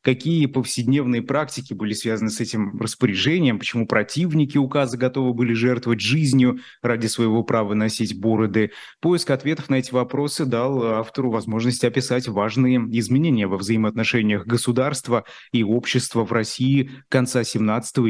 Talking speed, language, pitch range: 135 wpm, Russian, 110-130 Hz